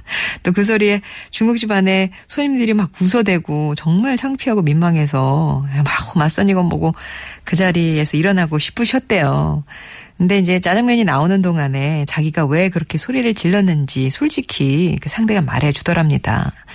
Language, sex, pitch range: Korean, female, 150-205 Hz